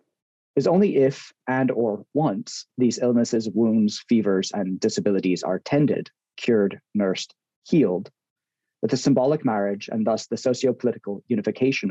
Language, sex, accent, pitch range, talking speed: English, male, American, 105-140 Hz, 130 wpm